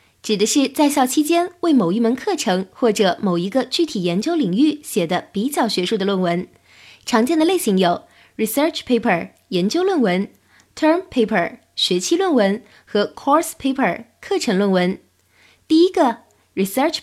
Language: Chinese